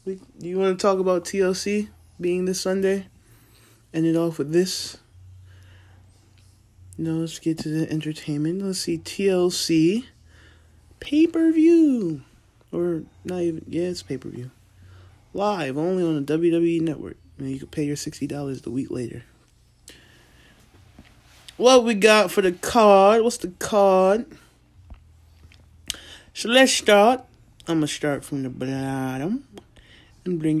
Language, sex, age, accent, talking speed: English, male, 20-39, American, 130 wpm